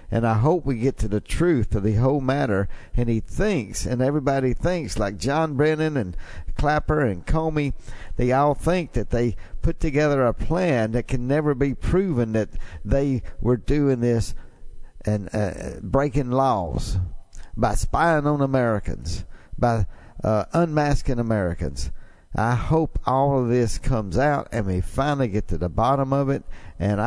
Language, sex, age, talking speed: English, male, 60-79, 160 wpm